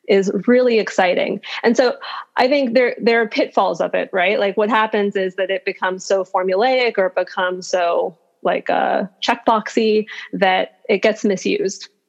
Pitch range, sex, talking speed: 195-225 Hz, female, 170 wpm